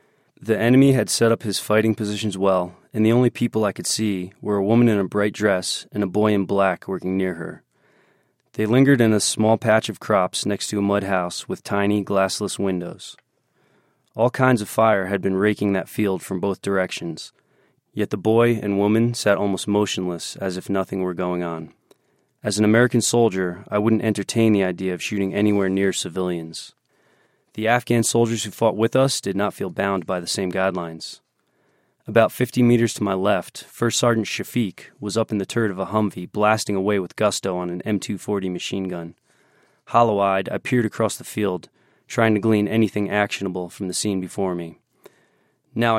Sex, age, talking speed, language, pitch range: male, 20-39, 190 wpm, English, 95-110 Hz